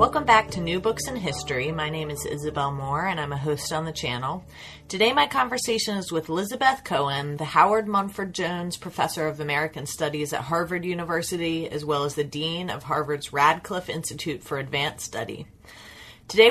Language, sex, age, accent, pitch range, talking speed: English, female, 30-49, American, 150-195 Hz, 180 wpm